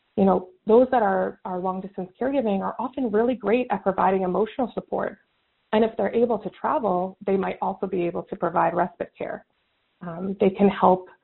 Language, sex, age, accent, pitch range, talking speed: English, female, 20-39, American, 180-210 Hz, 190 wpm